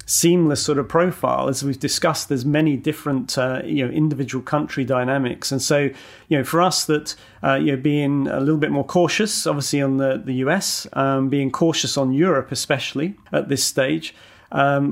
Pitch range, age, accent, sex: 135-150 Hz, 40-59, British, male